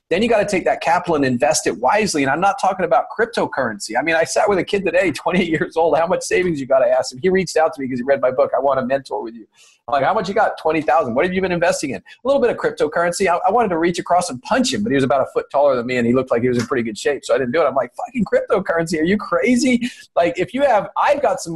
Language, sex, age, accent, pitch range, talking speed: English, male, 40-59, American, 140-205 Hz, 325 wpm